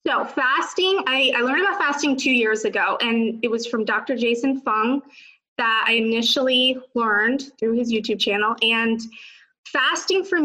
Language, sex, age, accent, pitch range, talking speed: English, female, 20-39, American, 225-275 Hz, 160 wpm